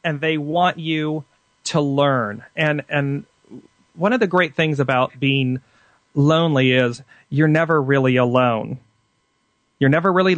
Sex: male